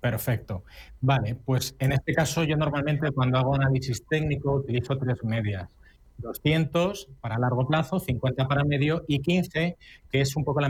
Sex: male